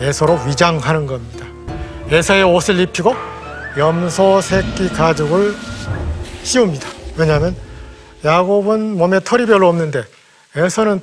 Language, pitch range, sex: Korean, 140-195 Hz, male